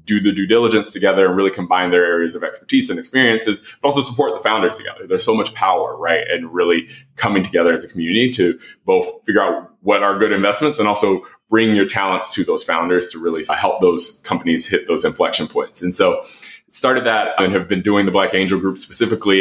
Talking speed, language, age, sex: 215 wpm, English, 20-39, male